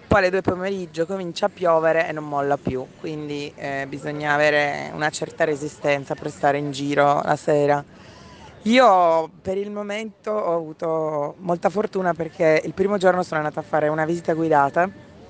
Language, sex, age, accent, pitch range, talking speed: Italian, female, 20-39, native, 145-175 Hz, 170 wpm